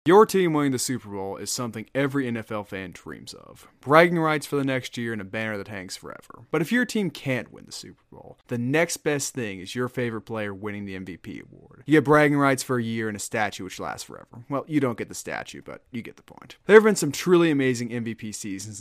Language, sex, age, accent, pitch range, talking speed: English, male, 20-39, American, 110-140 Hz, 250 wpm